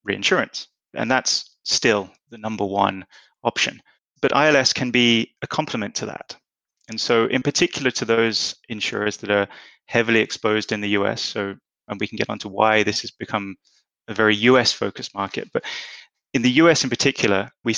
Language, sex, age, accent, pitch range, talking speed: English, male, 20-39, British, 105-115 Hz, 175 wpm